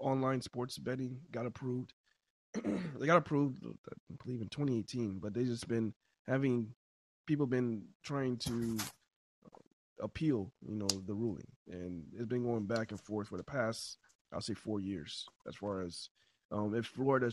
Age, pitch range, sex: 20-39, 105-125 Hz, male